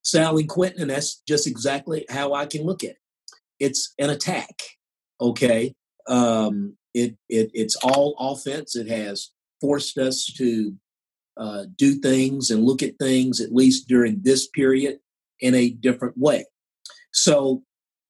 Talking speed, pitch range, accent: 145 wpm, 115-140 Hz, American